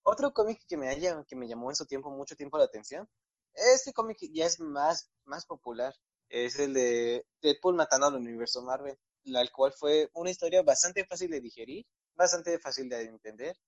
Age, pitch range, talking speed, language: 20-39, 125-170 Hz, 190 wpm, Spanish